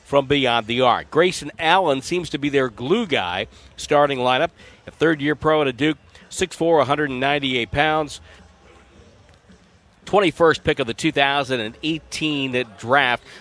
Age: 50-69